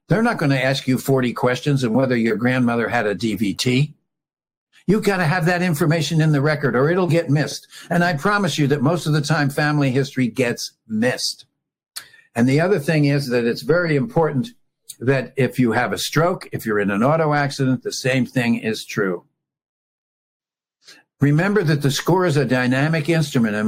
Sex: male